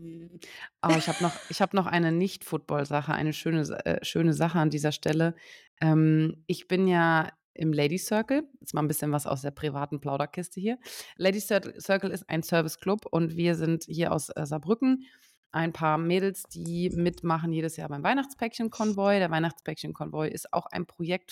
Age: 30-49